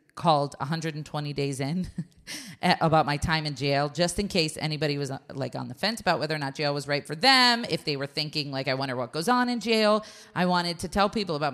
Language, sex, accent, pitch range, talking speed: English, female, American, 140-170 Hz, 235 wpm